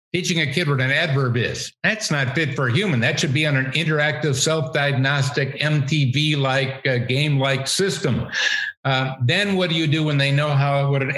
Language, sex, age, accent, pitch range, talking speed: English, male, 50-69, American, 130-155 Hz, 190 wpm